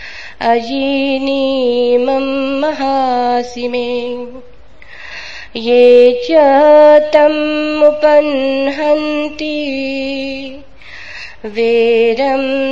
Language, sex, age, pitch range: Hindi, female, 20-39, 245-300 Hz